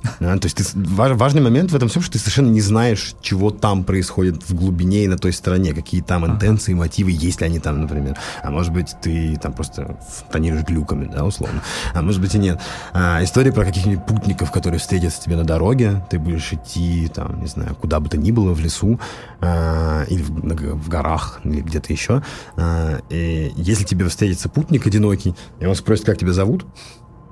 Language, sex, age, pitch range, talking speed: Russian, male, 20-39, 80-100 Hz, 200 wpm